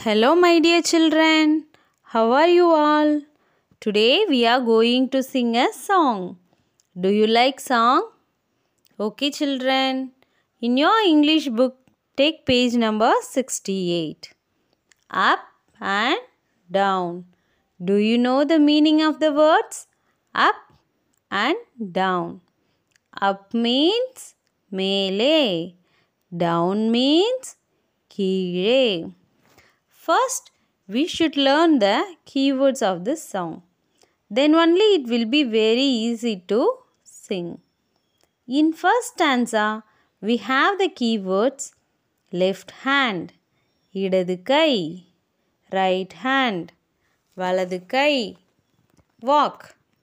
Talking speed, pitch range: 100 wpm, 195-300 Hz